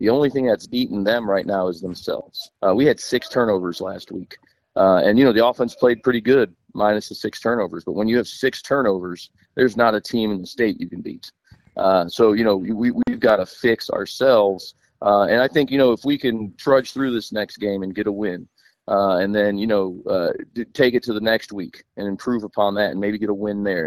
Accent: American